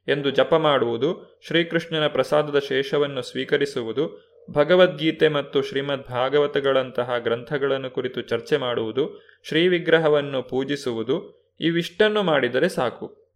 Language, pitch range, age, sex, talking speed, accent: Kannada, 140-185 Hz, 20-39, male, 90 wpm, native